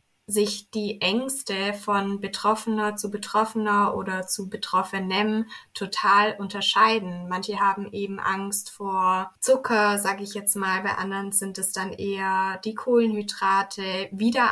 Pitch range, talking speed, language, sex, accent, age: 195-215 Hz, 130 wpm, German, female, German, 20-39